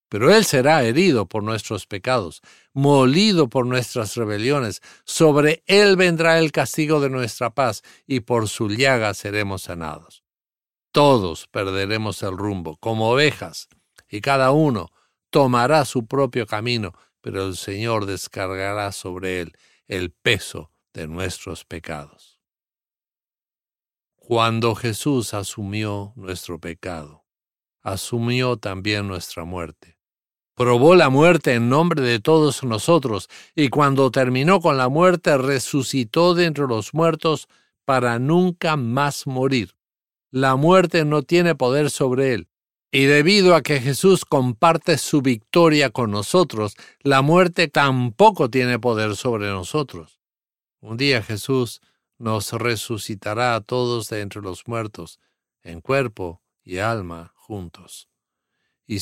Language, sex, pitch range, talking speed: English, male, 100-140 Hz, 125 wpm